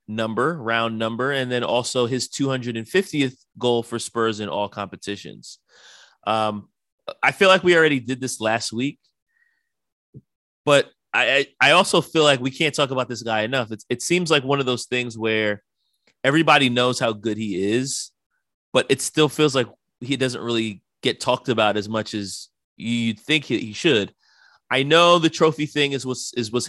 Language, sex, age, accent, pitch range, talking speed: English, male, 30-49, American, 110-140 Hz, 180 wpm